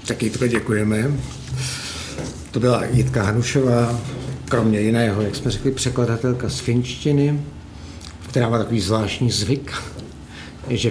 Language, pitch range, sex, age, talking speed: Czech, 95-120 Hz, male, 60-79, 115 wpm